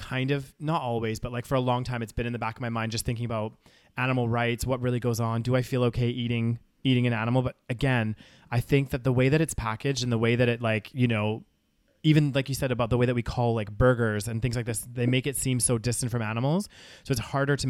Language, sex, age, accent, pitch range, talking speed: English, male, 20-39, American, 120-140 Hz, 275 wpm